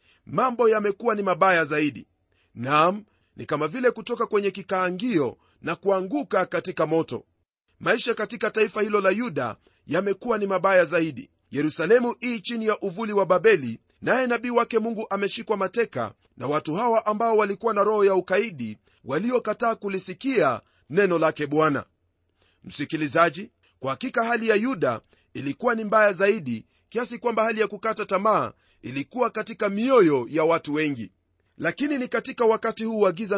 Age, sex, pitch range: 40-59, male, 160-230 Hz